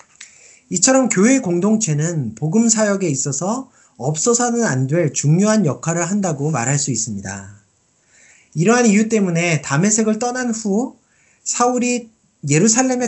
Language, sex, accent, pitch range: Korean, male, native, 145-225 Hz